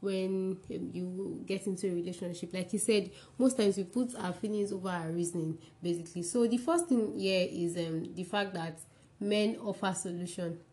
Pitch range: 175-225 Hz